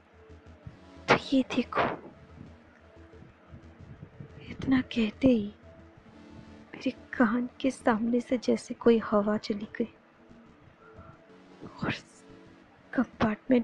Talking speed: 65 wpm